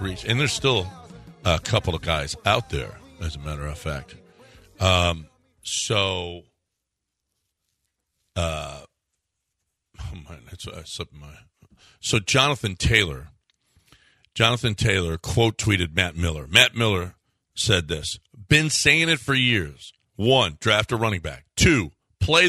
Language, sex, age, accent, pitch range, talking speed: English, male, 50-69, American, 90-115 Hz, 115 wpm